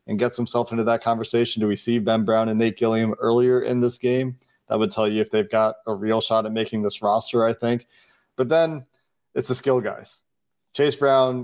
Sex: male